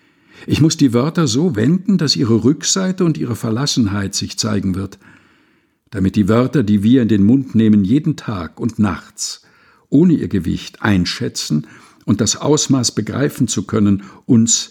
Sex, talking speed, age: male, 160 wpm, 60-79